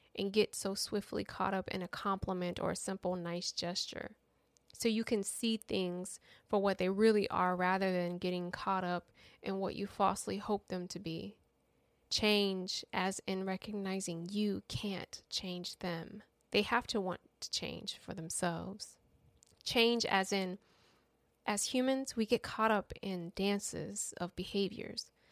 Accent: American